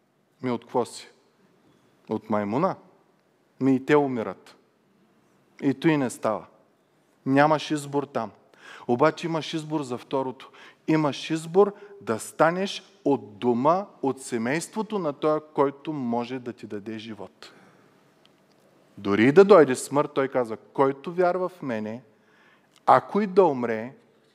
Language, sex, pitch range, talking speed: Bulgarian, male, 120-155 Hz, 130 wpm